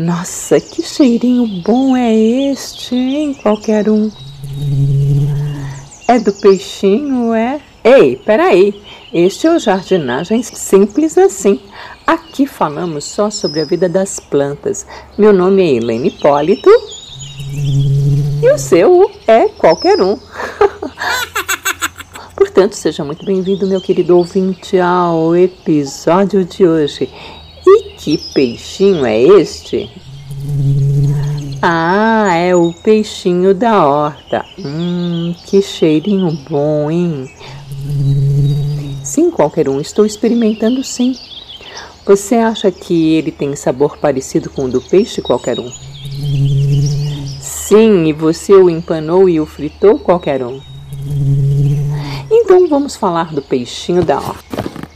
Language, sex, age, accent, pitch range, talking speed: Portuguese, female, 50-69, Brazilian, 145-220 Hz, 110 wpm